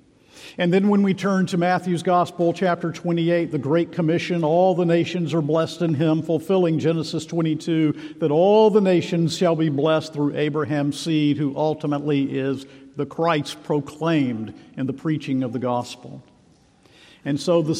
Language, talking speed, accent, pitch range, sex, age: English, 160 wpm, American, 145-175 Hz, male, 50-69